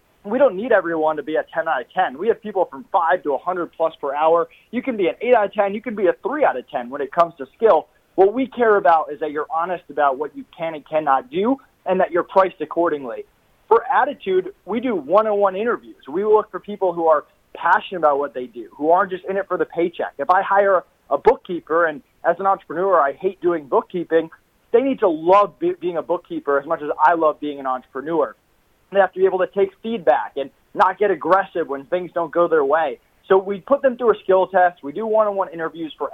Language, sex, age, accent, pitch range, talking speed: English, male, 30-49, American, 155-200 Hz, 240 wpm